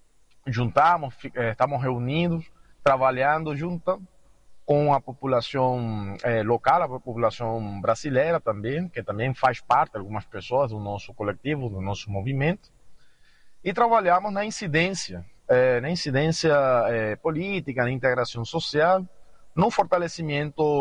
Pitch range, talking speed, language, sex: 115-160 Hz, 105 wpm, Portuguese, male